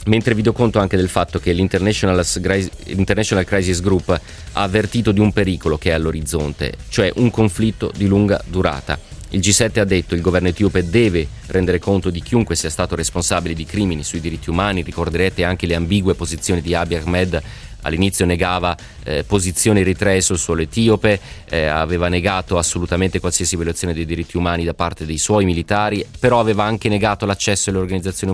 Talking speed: 175 wpm